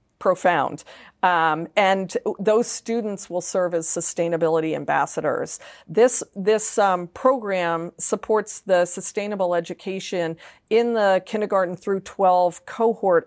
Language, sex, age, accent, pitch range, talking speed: English, female, 40-59, American, 170-200 Hz, 110 wpm